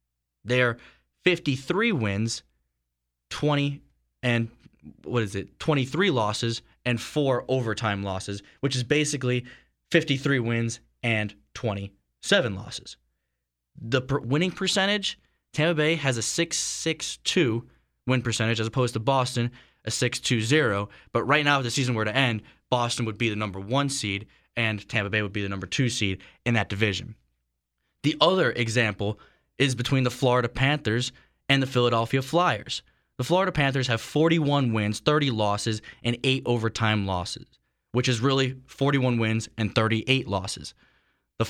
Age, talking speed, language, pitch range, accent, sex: 10-29, 150 wpm, English, 110-135 Hz, American, male